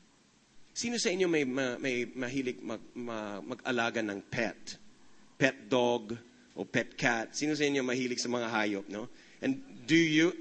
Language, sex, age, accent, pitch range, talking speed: English, male, 30-49, Filipino, 140-195 Hz, 155 wpm